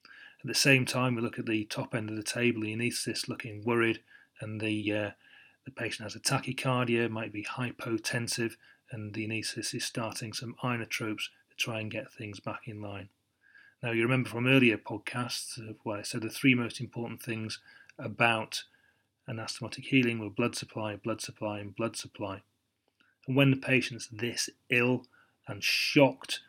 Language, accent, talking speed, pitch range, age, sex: English, British, 170 wpm, 110-125 Hz, 30-49, male